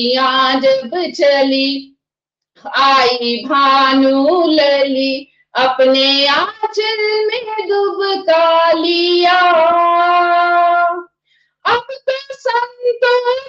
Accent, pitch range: native, 310-410 Hz